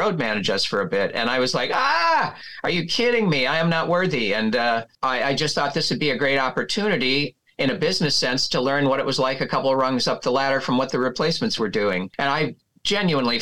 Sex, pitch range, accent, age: male, 125-155 Hz, American, 50-69